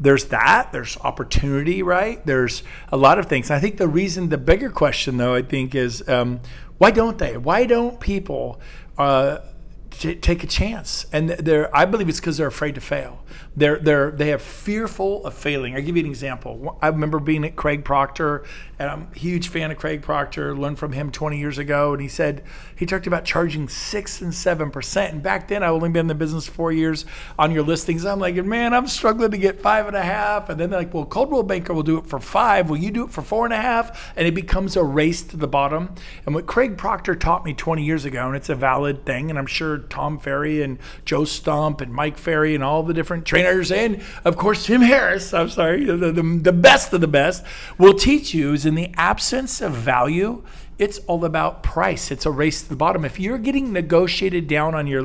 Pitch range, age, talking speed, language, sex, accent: 145-185 Hz, 50-69, 225 wpm, English, male, American